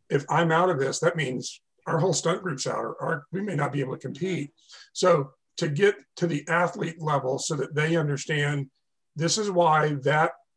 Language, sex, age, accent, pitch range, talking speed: English, male, 50-69, American, 140-170 Hz, 205 wpm